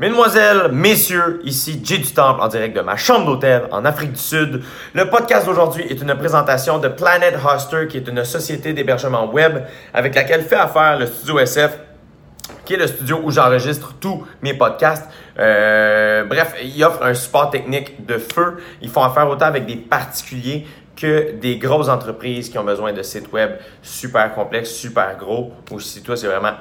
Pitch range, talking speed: 110-155 Hz, 185 wpm